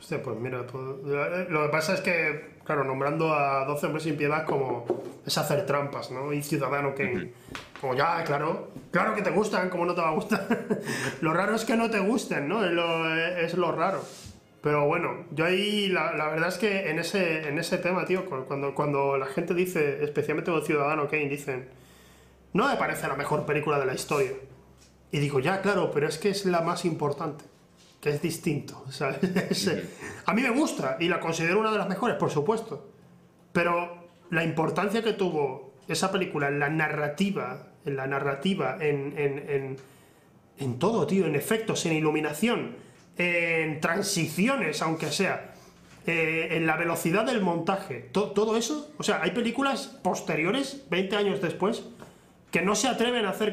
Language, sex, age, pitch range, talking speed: Spanish, male, 20-39, 145-195 Hz, 180 wpm